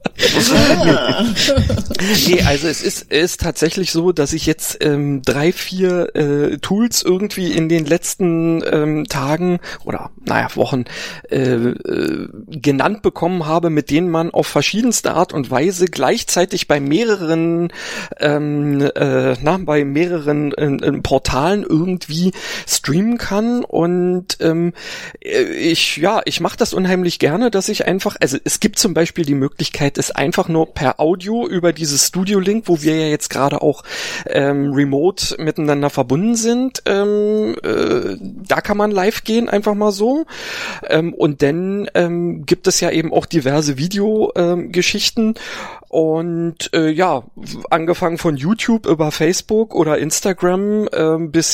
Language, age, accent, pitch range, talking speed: German, 40-59, German, 150-205 Hz, 145 wpm